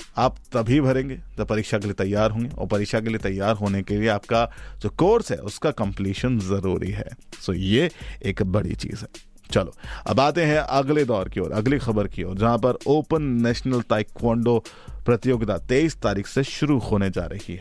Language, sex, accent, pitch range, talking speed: Hindi, male, native, 100-130 Hz, 200 wpm